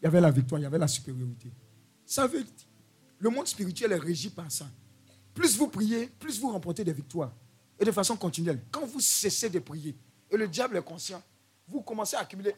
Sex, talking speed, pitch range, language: male, 220 wpm, 130-215 Hz, French